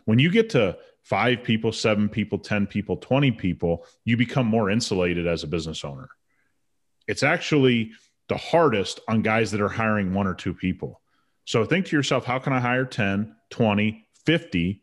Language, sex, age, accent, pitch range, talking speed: English, male, 30-49, American, 105-140 Hz, 180 wpm